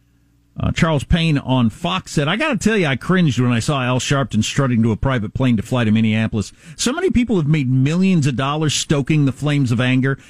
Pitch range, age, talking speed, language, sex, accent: 115-155 Hz, 50-69, 235 wpm, English, male, American